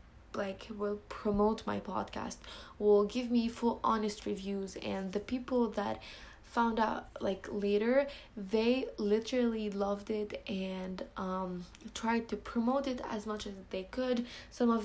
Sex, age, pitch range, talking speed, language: female, 20-39, 200-230 Hz, 145 wpm, English